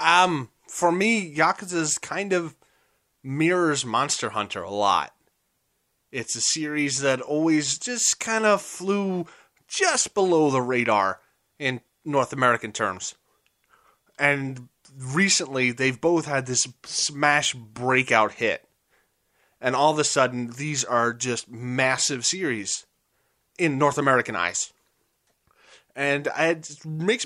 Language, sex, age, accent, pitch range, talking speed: English, male, 30-49, American, 125-155 Hz, 120 wpm